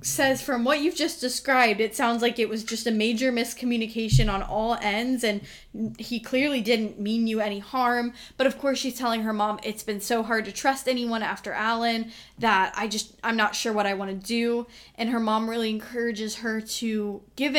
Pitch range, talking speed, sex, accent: 210-245 Hz, 210 wpm, female, American